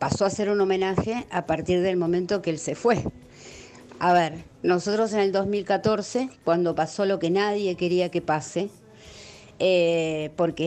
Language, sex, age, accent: Spanish, female, 50-69, Argentinian